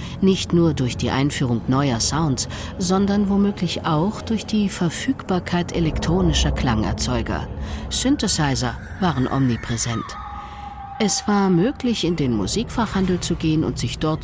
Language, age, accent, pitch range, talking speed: German, 50-69, German, 120-190 Hz, 120 wpm